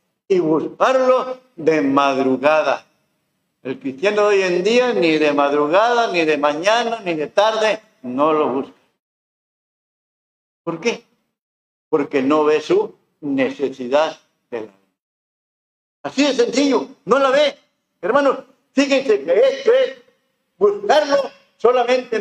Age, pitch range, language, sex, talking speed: 50-69, 170-275 Hz, Spanish, male, 120 wpm